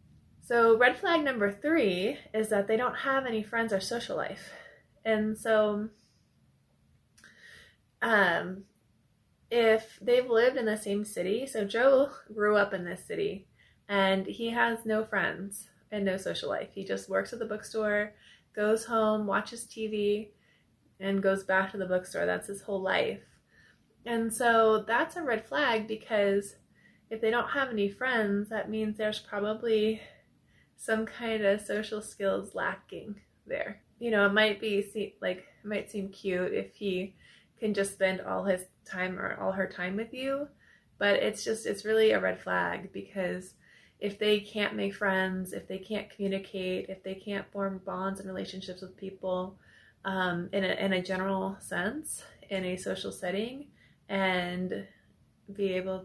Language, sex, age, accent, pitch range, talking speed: English, female, 20-39, American, 190-220 Hz, 160 wpm